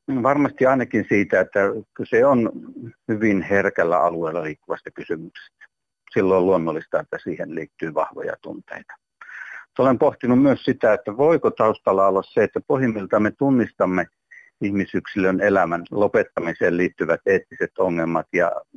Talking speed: 125 wpm